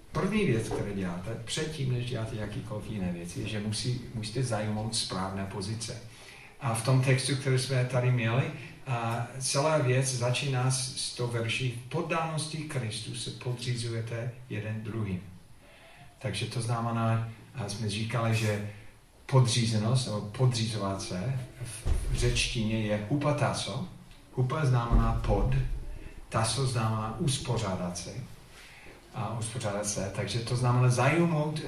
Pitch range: 110-130 Hz